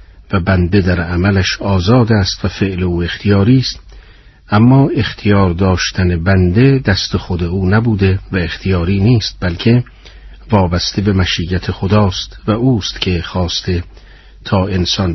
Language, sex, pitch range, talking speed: Persian, male, 90-110 Hz, 130 wpm